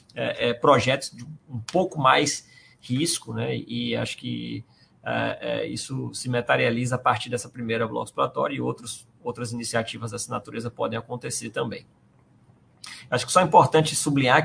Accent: Brazilian